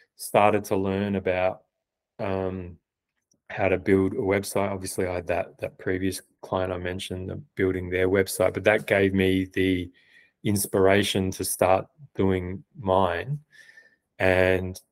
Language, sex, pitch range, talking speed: English, male, 90-100 Hz, 135 wpm